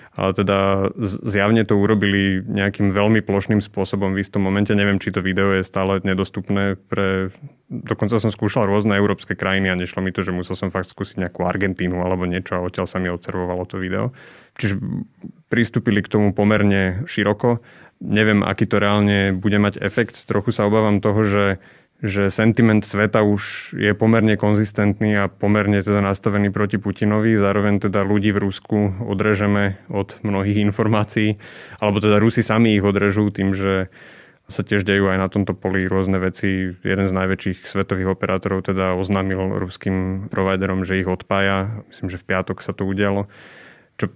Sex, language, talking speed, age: male, Slovak, 165 wpm, 30-49